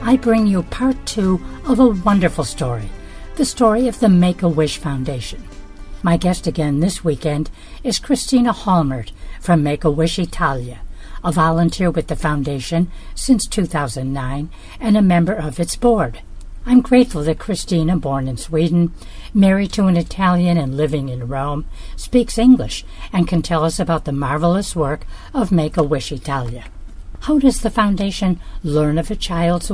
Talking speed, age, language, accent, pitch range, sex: 150 wpm, 60-79, English, American, 145-200 Hz, female